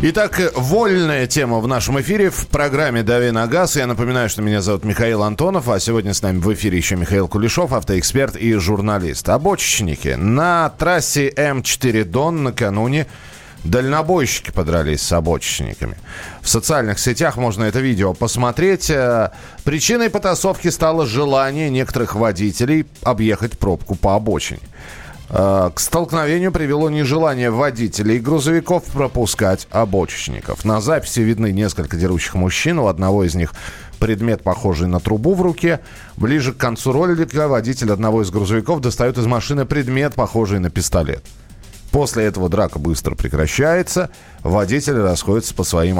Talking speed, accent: 140 wpm, native